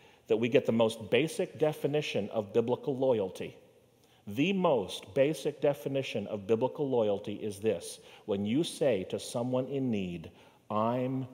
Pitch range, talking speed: 110-145 Hz, 145 wpm